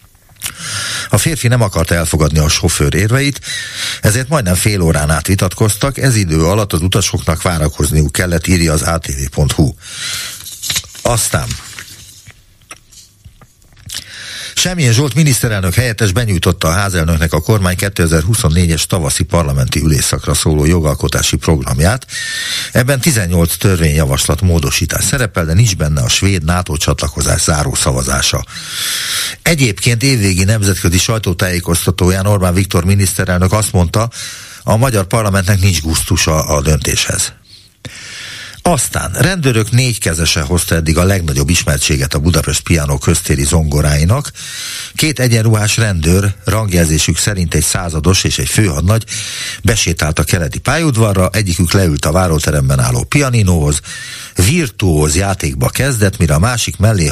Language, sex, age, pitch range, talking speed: Hungarian, male, 60-79, 80-110 Hz, 115 wpm